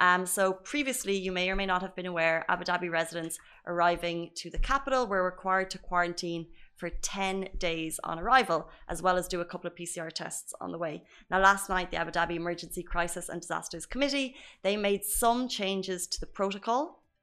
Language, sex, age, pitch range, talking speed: Arabic, female, 20-39, 175-205 Hz, 200 wpm